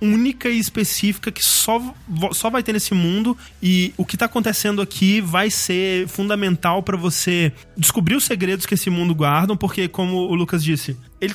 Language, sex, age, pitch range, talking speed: Portuguese, male, 20-39, 160-210 Hz, 180 wpm